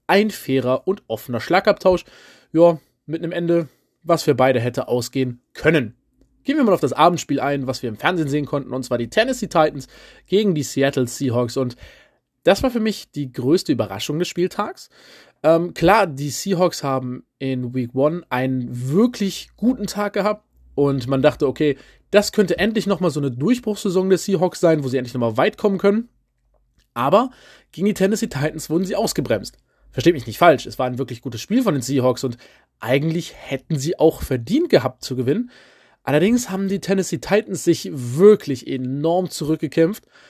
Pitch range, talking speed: 135-195 Hz, 180 wpm